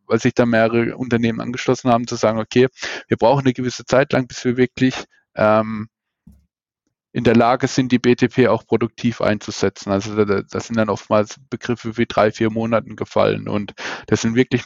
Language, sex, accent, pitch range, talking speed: German, male, German, 110-125 Hz, 185 wpm